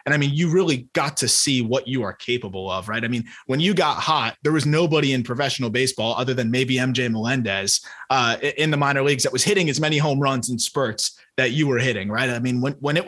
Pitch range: 125-155 Hz